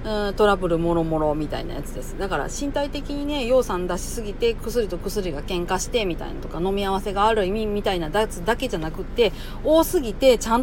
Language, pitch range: Japanese, 170-235 Hz